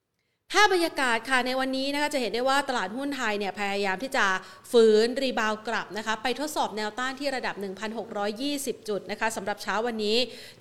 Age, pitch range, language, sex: 30-49, 215-265 Hz, Thai, female